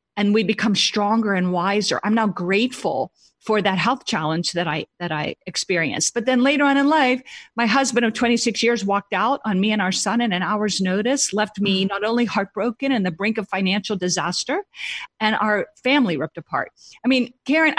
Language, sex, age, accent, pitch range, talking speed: English, female, 50-69, American, 200-260 Hz, 200 wpm